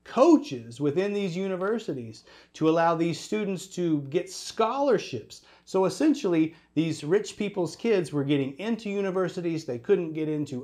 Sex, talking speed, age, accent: male, 140 wpm, 40-59, American